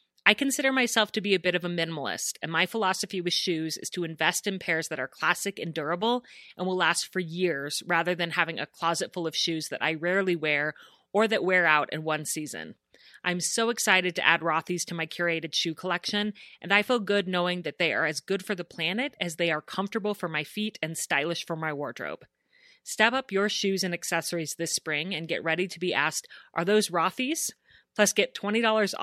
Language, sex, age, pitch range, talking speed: English, female, 30-49, 160-205 Hz, 215 wpm